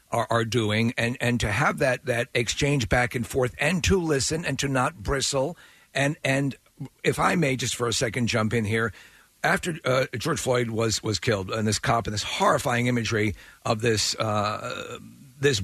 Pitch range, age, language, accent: 115-145 Hz, 50-69, English, American